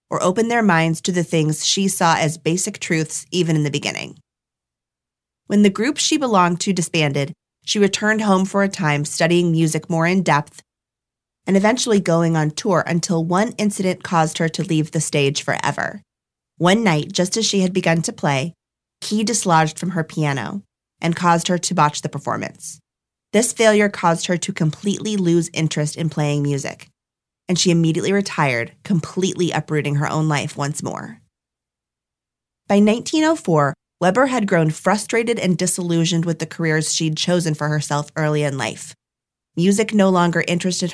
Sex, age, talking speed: female, 30-49, 165 wpm